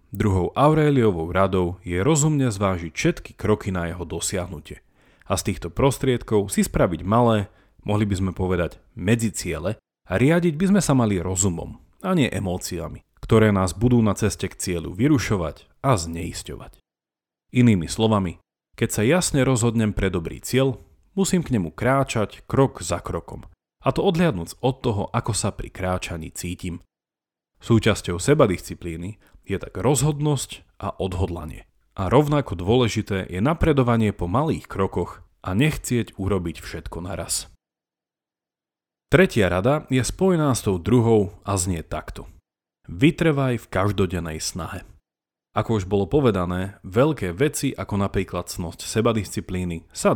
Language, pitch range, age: Slovak, 90-125 Hz, 40-59